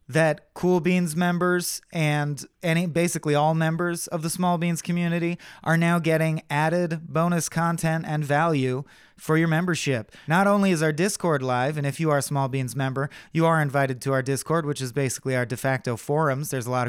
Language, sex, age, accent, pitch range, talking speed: English, male, 30-49, American, 140-175 Hz, 190 wpm